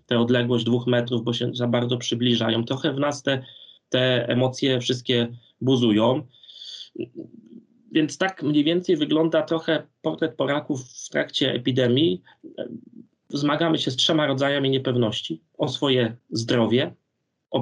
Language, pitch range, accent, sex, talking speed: Polish, 130-170 Hz, native, male, 130 wpm